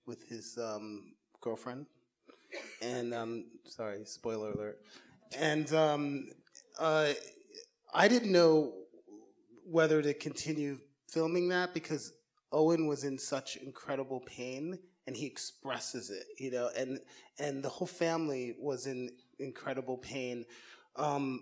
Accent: American